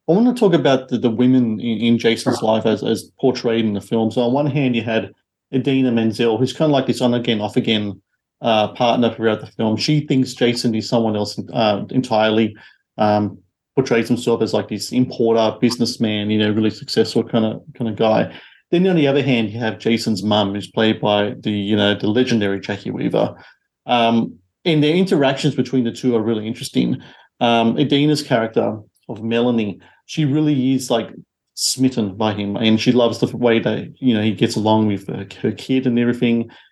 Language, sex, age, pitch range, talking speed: English, male, 40-59, 110-130 Hz, 200 wpm